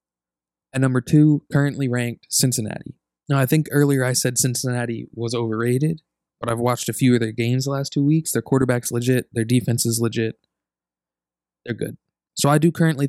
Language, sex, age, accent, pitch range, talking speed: English, male, 20-39, American, 115-140 Hz, 185 wpm